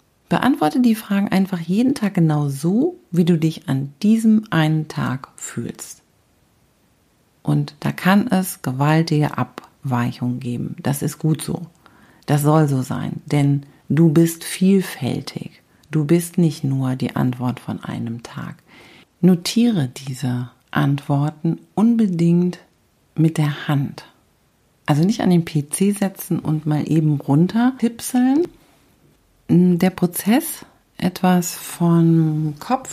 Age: 50-69